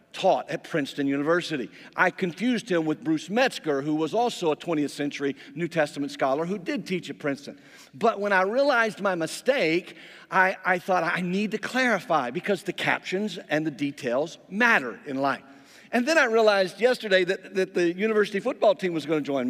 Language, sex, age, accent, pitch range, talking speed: English, male, 50-69, American, 155-210 Hz, 190 wpm